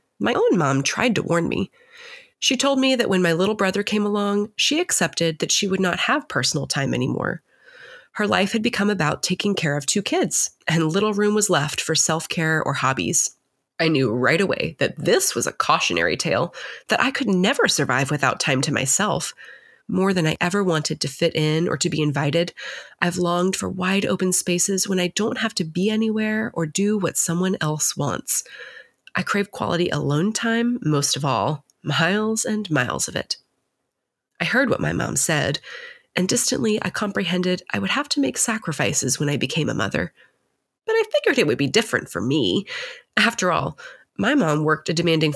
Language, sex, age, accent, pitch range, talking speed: English, female, 30-49, American, 160-230 Hz, 195 wpm